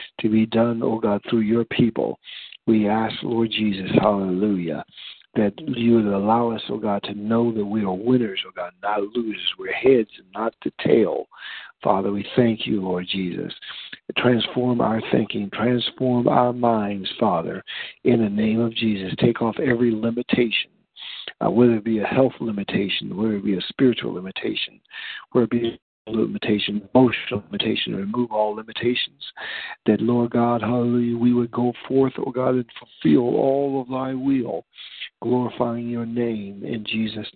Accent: American